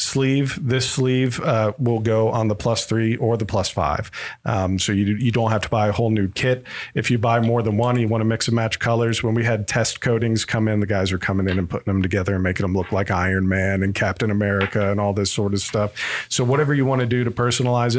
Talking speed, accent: 265 wpm, American